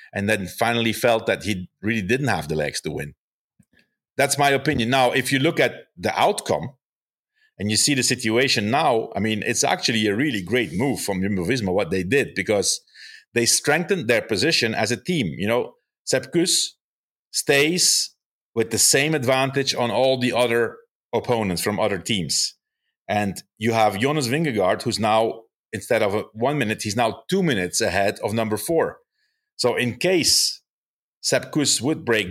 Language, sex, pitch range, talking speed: English, male, 110-150 Hz, 175 wpm